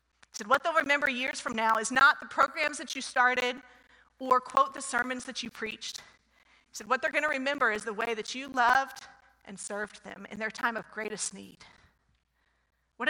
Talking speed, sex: 205 wpm, female